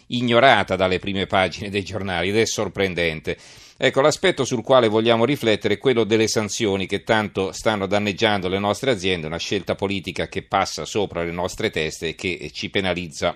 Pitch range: 90-115 Hz